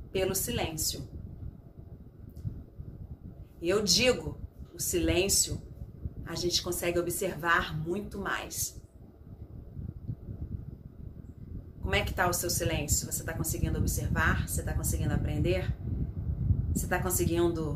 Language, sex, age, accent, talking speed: Portuguese, female, 40-59, Brazilian, 105 wpm